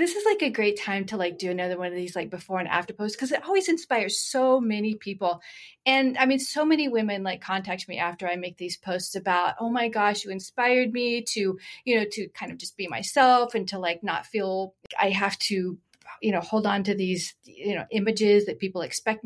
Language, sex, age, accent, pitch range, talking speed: English, female, 30-49, American, 185-235 Hz, 235 wpm